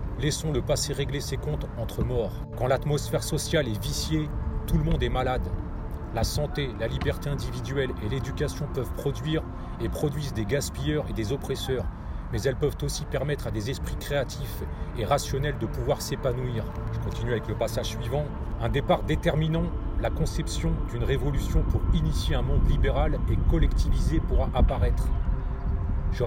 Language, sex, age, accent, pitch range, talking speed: French, male, 40-59, French, 90-140 Hz, 160 wpm